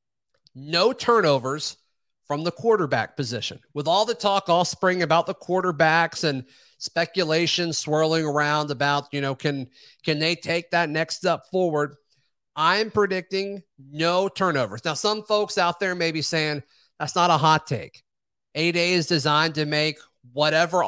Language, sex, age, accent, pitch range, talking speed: English, male, 40-59, American, 145-170 Hz, 155 wpm